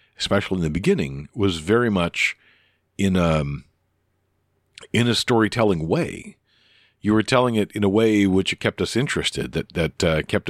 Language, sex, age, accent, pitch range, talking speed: English, male, 50-69, American, 85-110 Hz, 155 wpm